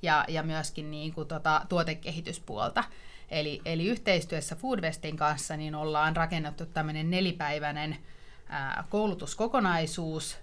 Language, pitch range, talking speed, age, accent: Finnish, 155-175 Hz, 110 wpm, 30-49, native